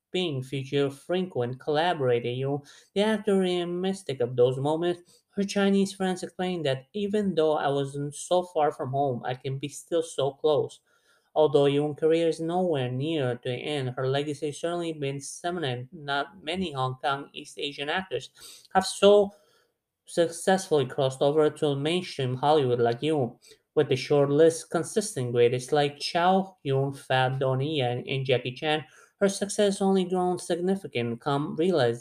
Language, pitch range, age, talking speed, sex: English, 130-170 Hz, 30-49, 155 wpm, male